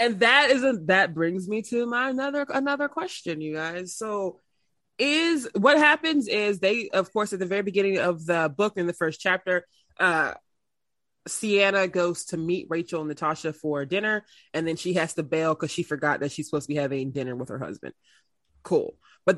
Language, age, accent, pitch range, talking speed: English, 20-39, American, 160-225 Hz, 195 wpm